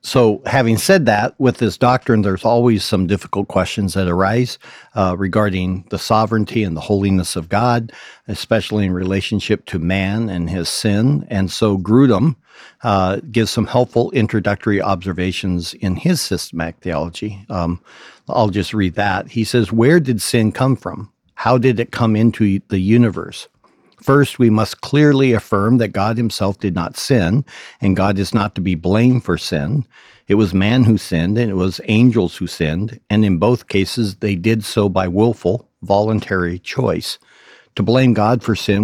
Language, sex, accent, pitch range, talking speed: English, male, American, 95-115 Hz, 170 wpm